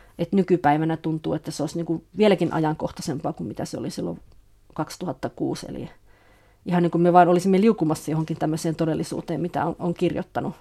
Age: 30-49